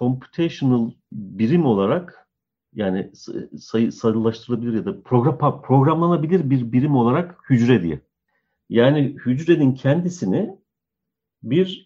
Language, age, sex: Turkish, 50-69, male